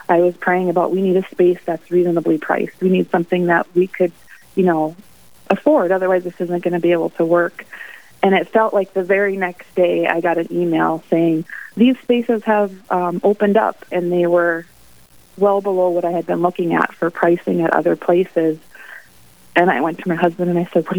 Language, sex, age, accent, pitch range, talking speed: English, female, 30-49, American, 170-205 Hz, 210 wpm